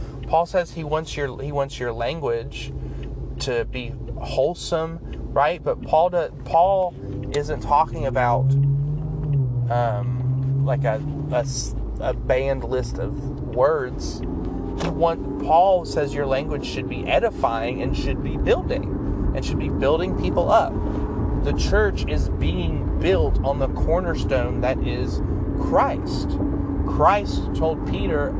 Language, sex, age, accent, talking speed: English, male, 30-49, American, 120 wpm